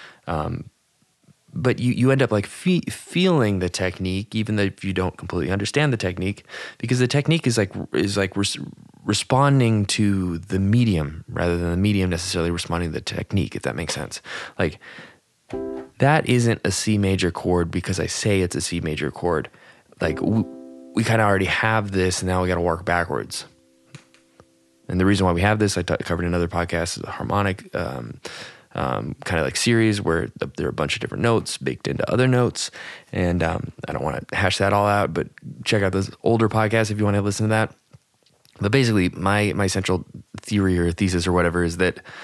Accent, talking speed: American, 205 wpm